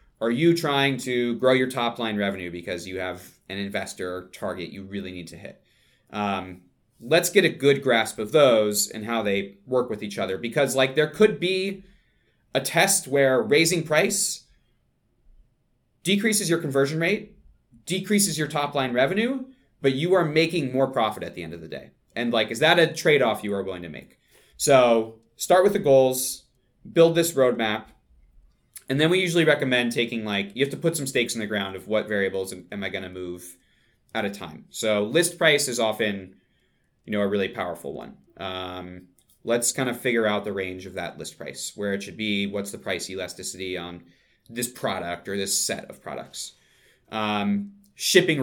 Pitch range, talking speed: 100-160 Hz, 190 wpm